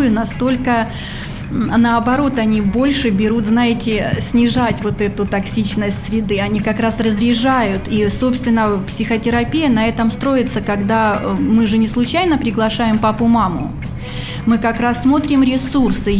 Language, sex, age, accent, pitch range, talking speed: Russian, female, 30-49, native, 220-255 Hz, 120 wpm